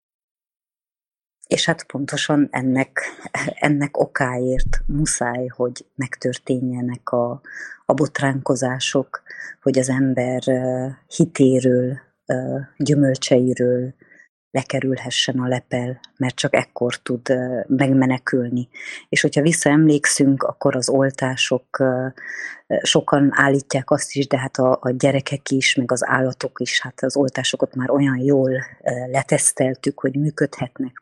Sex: female